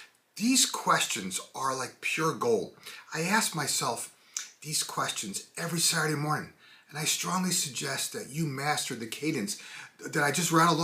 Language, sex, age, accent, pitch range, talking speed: English, male, 30-49, American, 150-200 Hz, 150 wpm